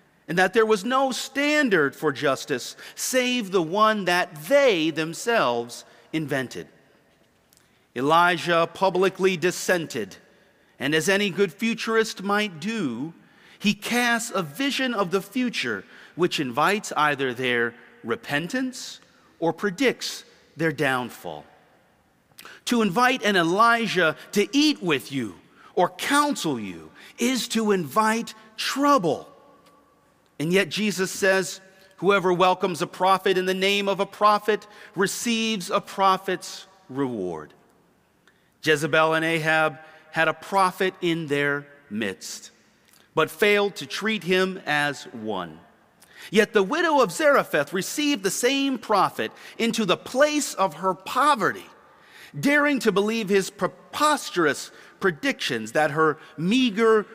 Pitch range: 160-225 Hz